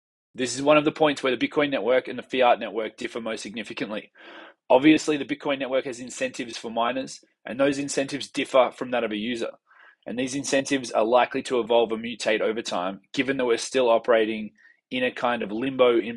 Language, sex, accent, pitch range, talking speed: English, male, Australian, 115-140 Hz, 210 wpm